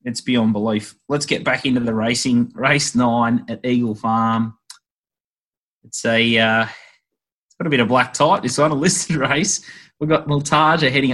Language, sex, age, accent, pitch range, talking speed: English, male, 20-39, Australian, 110-125 Hz, 180 wpm